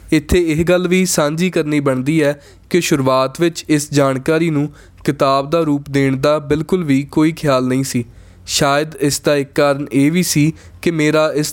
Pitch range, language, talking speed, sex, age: 135-160 Hz, Punjabi, 185 wpm, male, 20-39